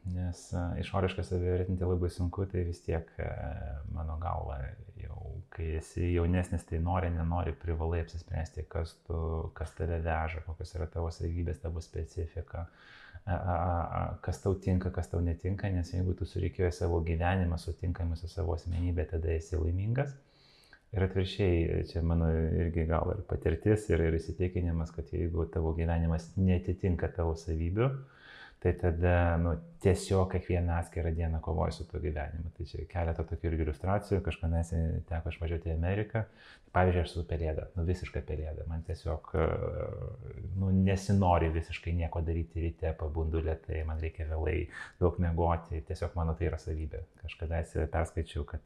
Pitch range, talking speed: 80-90 Hz, 140 wpm